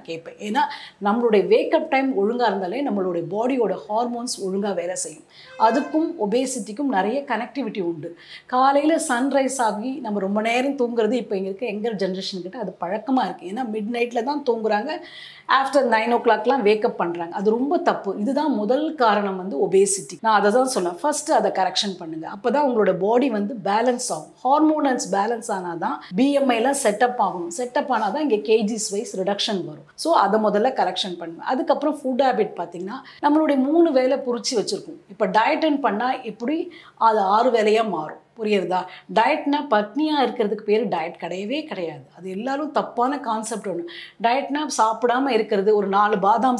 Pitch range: 205-270 Hz